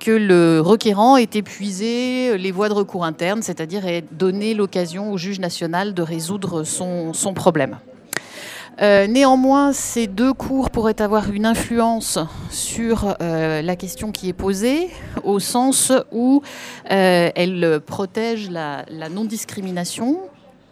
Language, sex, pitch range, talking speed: French, female, 175-220 Hz, 135 wpm